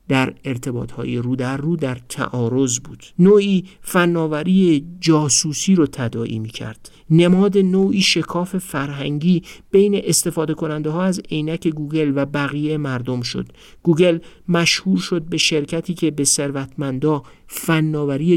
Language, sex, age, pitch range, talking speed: Persian, male, 50-69, 125-165 Hz, 130 wpm